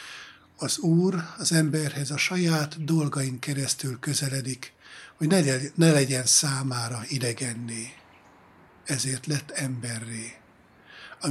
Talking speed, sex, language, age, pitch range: 95 wpm, male, Hungarian, 60-79, 140-165 Hz